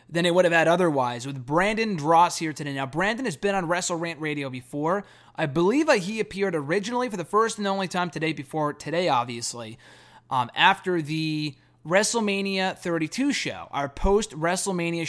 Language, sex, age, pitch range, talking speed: English, male, 20-39, 150-190 Hz, 165 wpm